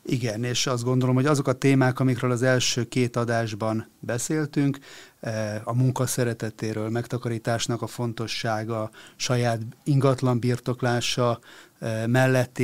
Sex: male